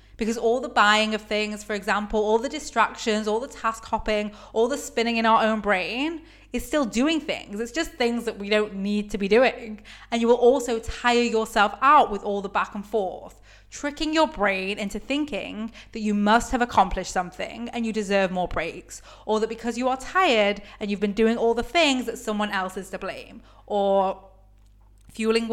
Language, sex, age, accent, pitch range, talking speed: English, female, 20-39, British, 195-240 Hz, 200 wpm